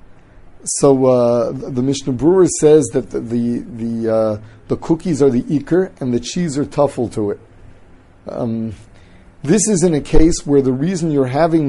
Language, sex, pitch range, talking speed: English, male, 110-155 Hz, 170 wpm